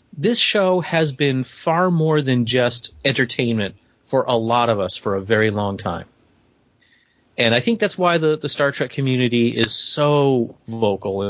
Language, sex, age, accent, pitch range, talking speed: English, male, 30-49, American, 115-150 Hz, 170 wpm